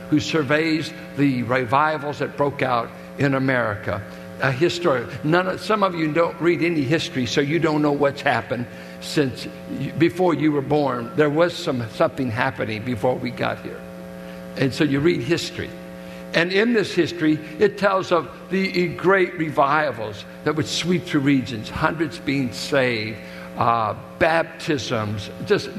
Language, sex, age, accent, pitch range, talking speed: English, male, 60-79, American, 125-170 Hz, 155 wpm